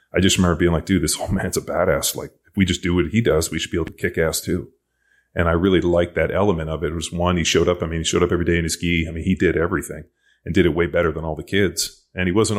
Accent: American